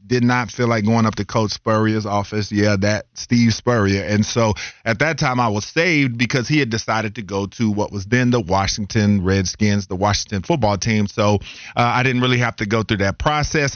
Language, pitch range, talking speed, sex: English, 110-135 Hz, 220 wpm, male